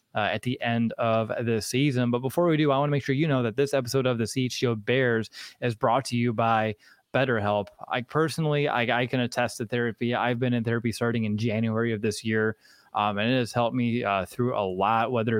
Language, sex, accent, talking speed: English, male, American, 235 wpm